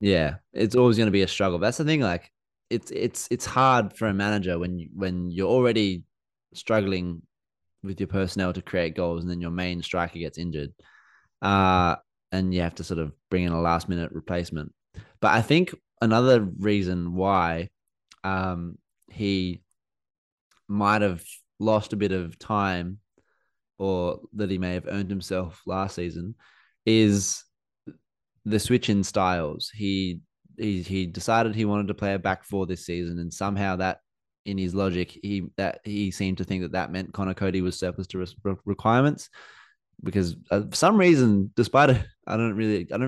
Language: English